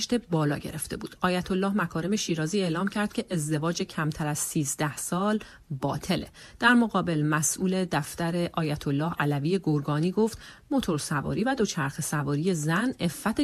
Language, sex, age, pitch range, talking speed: Persian, female, 40-59, 160-210 Hz, 140 wpm